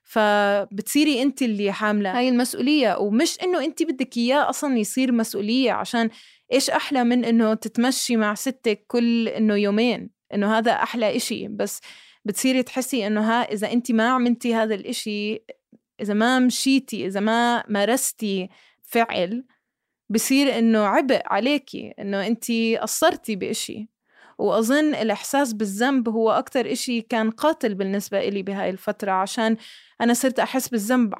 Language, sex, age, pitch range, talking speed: Arabic, female, 20-39, 210-250 Hz, 140 wpm